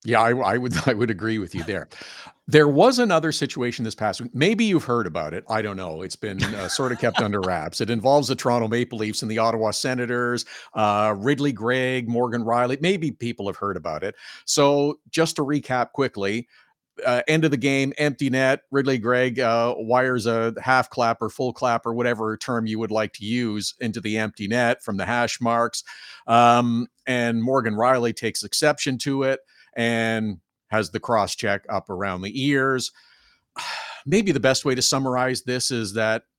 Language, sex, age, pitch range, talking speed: English, male, 50-69, 115-135 Hz, 195 wpm